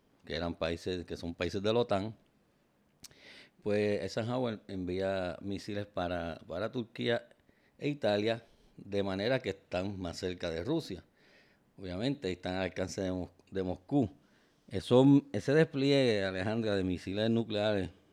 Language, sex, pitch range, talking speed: Spanish, male, 90-115 Hz, 135 wpm